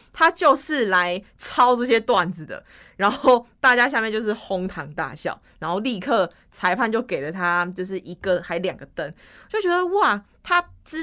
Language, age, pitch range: Chinese, 20-39, 180-250 Hz